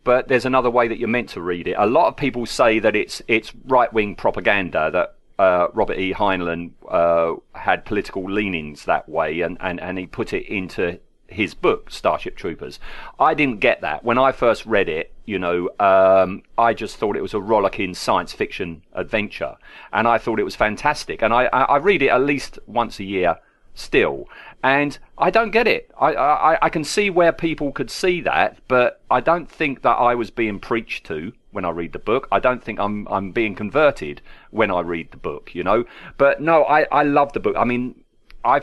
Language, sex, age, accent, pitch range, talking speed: English, male, 40-59, British, 100-145 Hz, 215 wpm